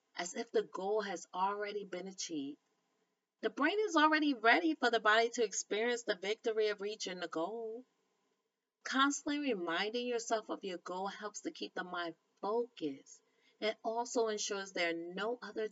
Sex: female